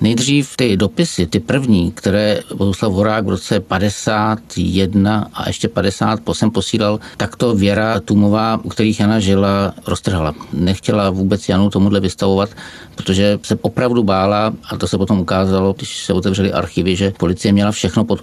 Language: Czech